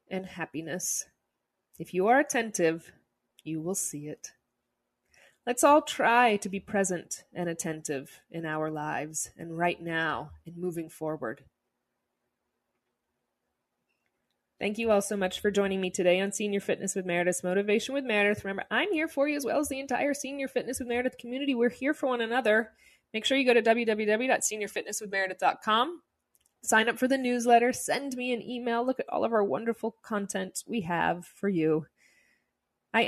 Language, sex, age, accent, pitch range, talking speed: English, female, 20-39, American, 175-235 Hz, 165 wpm